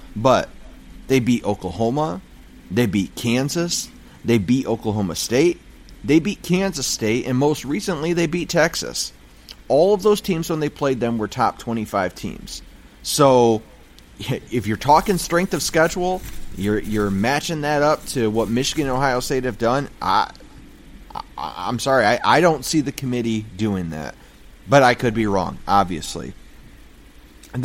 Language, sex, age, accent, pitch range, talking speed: English, male, 30-49, American, 105-155 Hz, 155 wpm